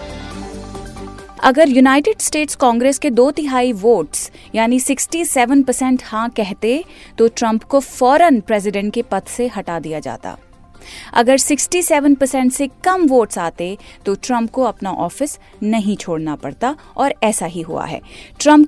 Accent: native